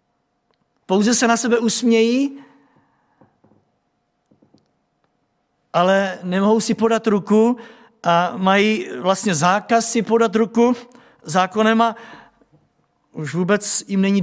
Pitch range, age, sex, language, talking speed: 200-240 Hz, 50-69, male, Czech, 95 wpm